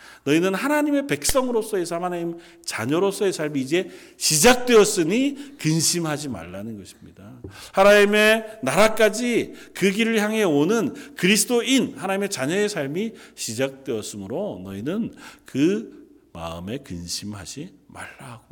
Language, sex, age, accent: Korean, male, 40-59, native